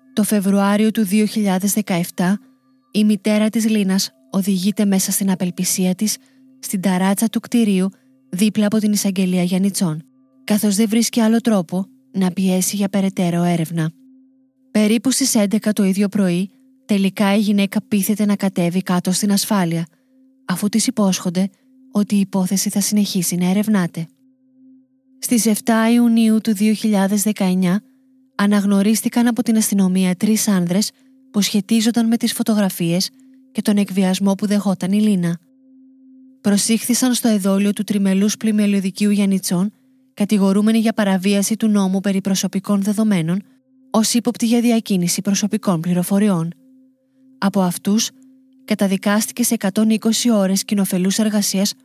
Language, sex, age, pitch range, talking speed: Greek, female, 20-39, 195-235 Hz, 125 wpm